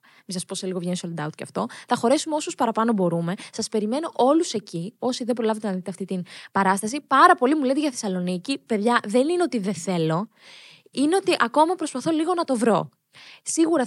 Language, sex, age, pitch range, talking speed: Greek, female, 20-39, 195-285 Hz, 210 wpm